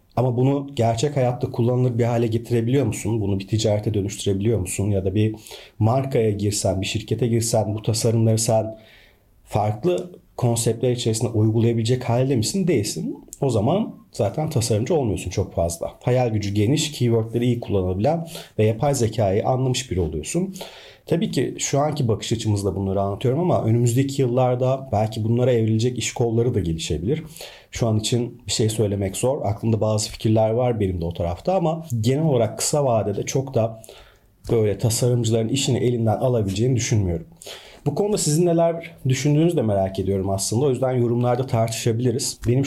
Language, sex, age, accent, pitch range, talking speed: Turkish, male, 40-59, native, 105-130 Hz, 155 wpm